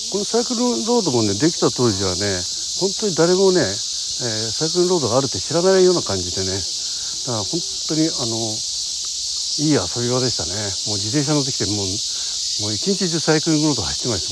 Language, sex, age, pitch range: Japanese, male, 60-79, 95-145 Hz